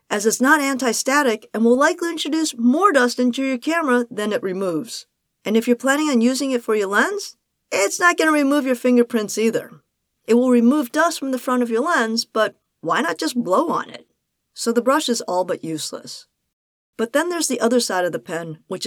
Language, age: English, 40-59